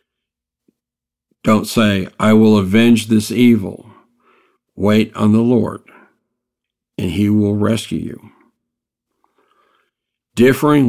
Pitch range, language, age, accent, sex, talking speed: 100-120 Hz, English, 60-79, American, male, 95 wpm